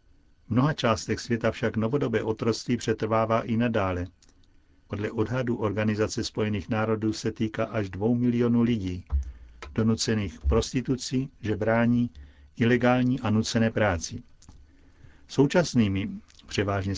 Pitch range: 95-120 Hz